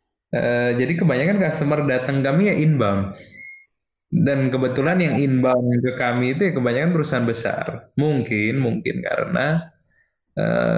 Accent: native